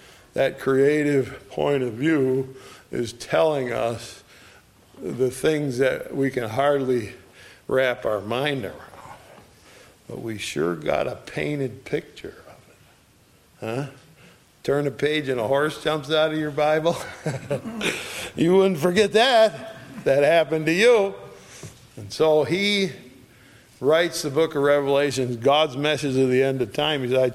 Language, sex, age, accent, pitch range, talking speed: English, male, 50-69, American, 120-155 Hz, 140 wpm